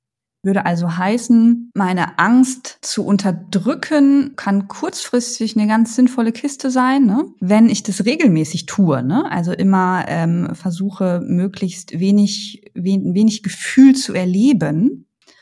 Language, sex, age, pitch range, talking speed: German, female, 20-39, 175-215 Hz, 125 wpm